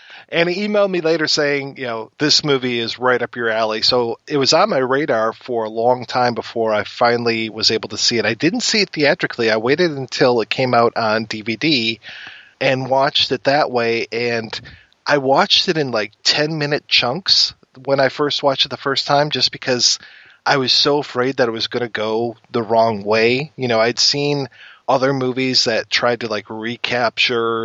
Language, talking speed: English, 200 wpm